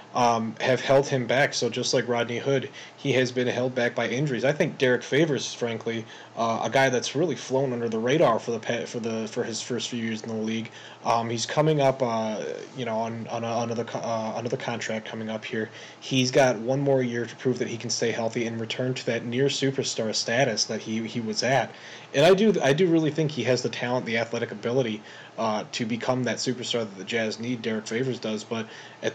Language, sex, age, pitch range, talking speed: English, male, 20-39, 115-130 Hz, 230 wpm